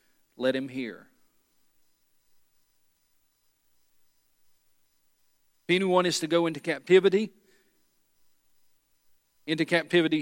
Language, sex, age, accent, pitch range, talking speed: English, male, 40-59, American, 120-170 Hz, 70 wpm